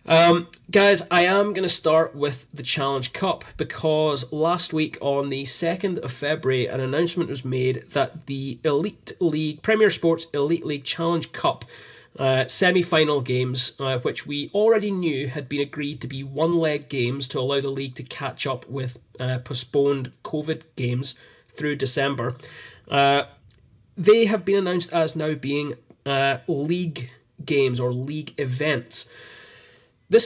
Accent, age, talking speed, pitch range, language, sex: British, 30-49, 155 wpm, 130-160 Hz, English, male